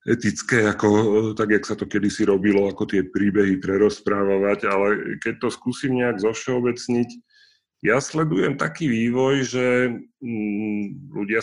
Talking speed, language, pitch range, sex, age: 120 wpm, Slovak, 95-115 Hz, male, 30-49